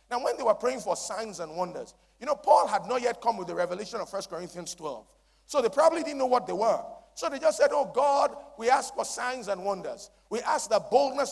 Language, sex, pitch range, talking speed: English, male, 180-260 Hz, 250 wpm